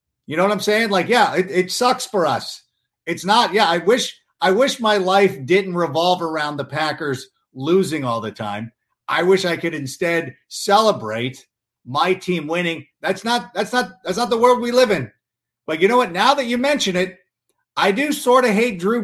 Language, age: English, 50-69